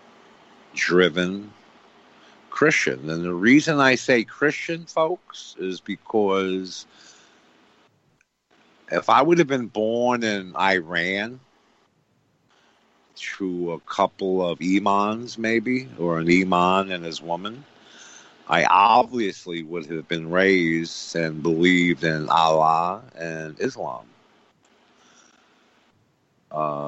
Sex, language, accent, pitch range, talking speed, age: male, English, American, 85-115 Hz, 100 wpm, 50-69